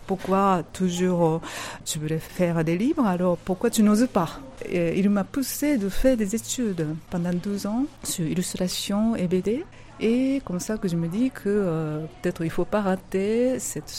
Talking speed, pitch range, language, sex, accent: 185 wpm, 170-240 Hz, French, female, French